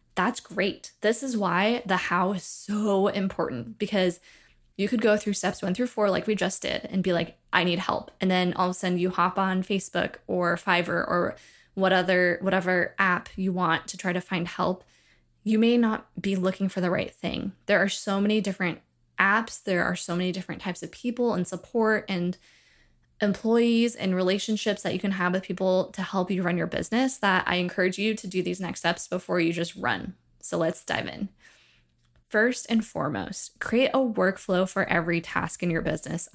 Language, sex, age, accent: English, female, 20-39, American